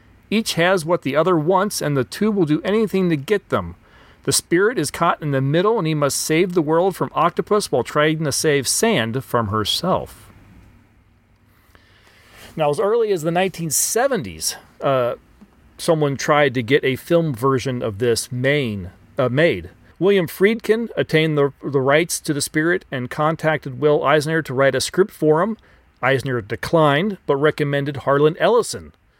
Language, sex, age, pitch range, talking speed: English, male, 40-59, 125-170 Hz, 165 wpm